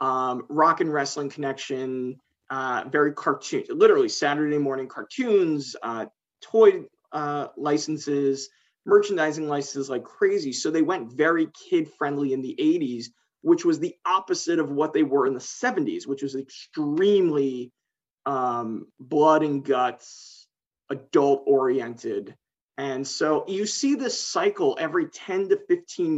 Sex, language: male, English